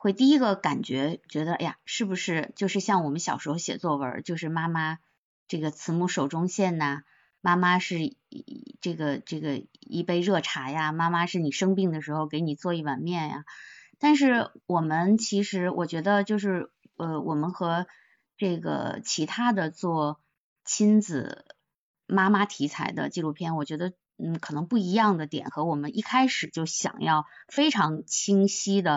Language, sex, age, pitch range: Chinese, female, 20-39, 155-220 Hz